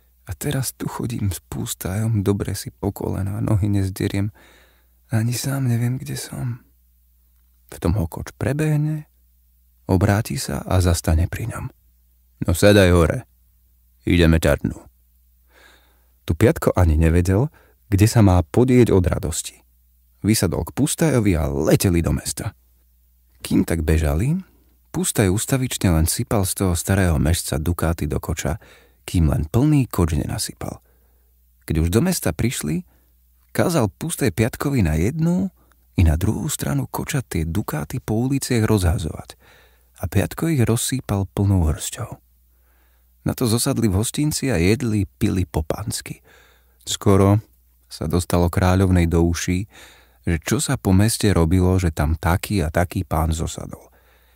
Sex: male